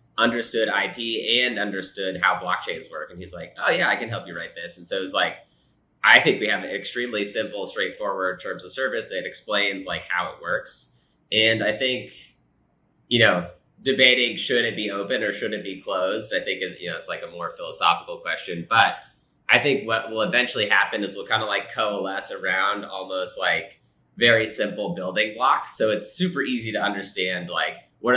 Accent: American